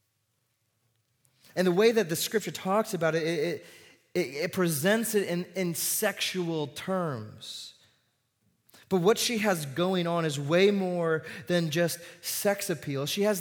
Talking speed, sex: 150 wpm, male